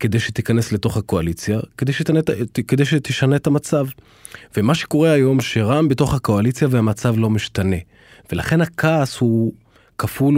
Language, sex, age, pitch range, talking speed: Hebrew, male, 30-49, 100-125 Hz, 135 wpm